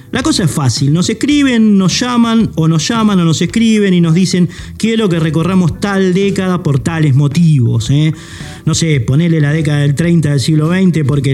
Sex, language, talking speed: male, Spanish, 205 wpm